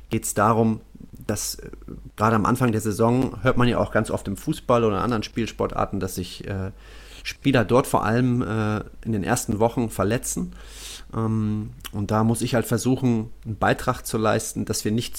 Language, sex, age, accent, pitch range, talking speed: German, male, 30-49, German, 105-125 Hz, 190 wpm